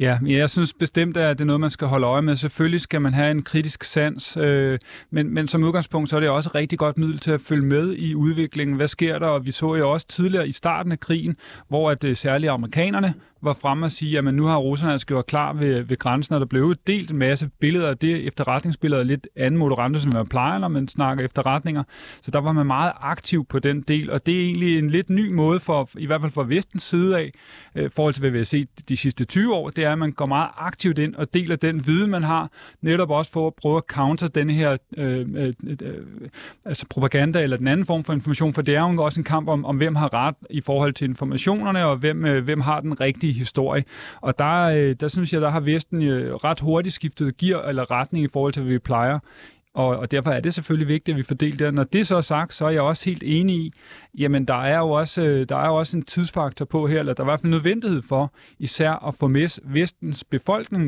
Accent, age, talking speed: native, 30-49, 250 wpm